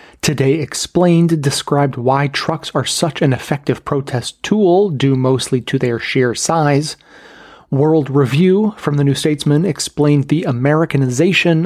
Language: English